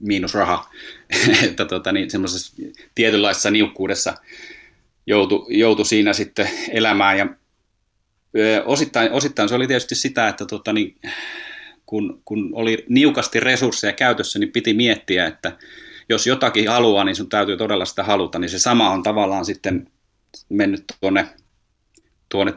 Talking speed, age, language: 135 wpm, 30-49, Finnish